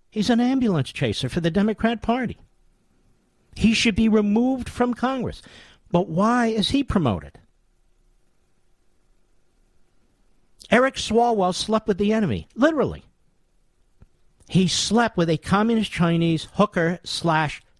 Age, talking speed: 50-69, 115 wpm